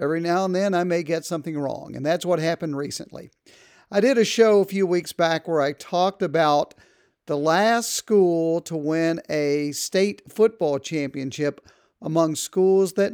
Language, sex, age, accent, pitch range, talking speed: English, male, 50-69, American, 150-200 Hz, 175 wpm